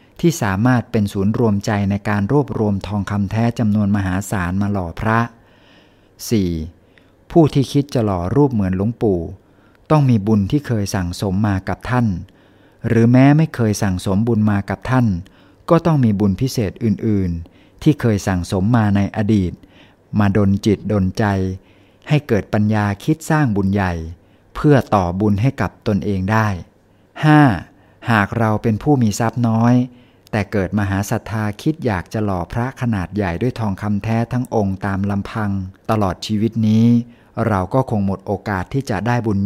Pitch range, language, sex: 95-115 Hz, Thai, male